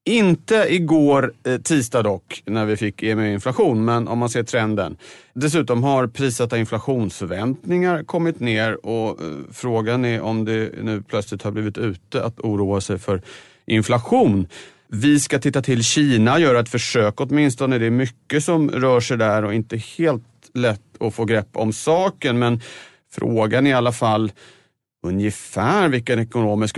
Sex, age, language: male, 30-49, Swedish